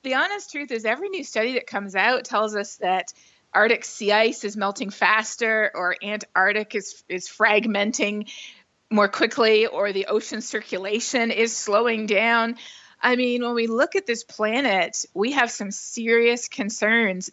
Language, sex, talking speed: English, female, 160 wpm